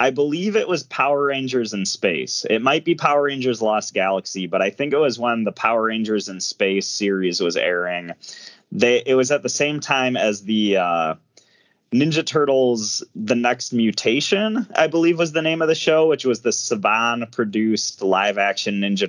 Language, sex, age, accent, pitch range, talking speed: English, male, 20-39, American, 105-145 Hz, 185 wpm